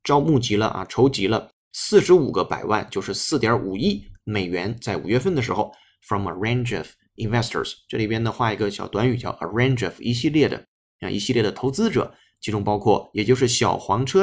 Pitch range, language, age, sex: 105-135 Hz, Chinese, 20-39, male